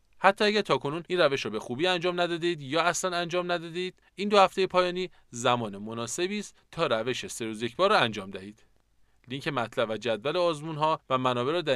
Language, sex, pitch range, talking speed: Persian, male, 115-175 Hz, 190 wpm